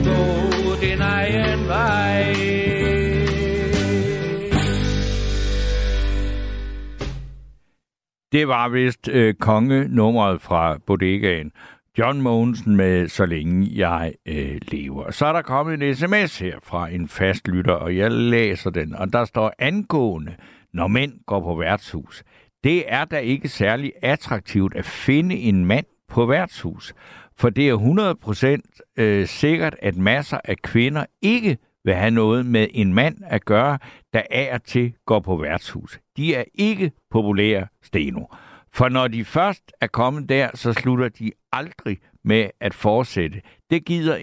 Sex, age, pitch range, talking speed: male, 60-79, 95-130 Hz, 135 wpm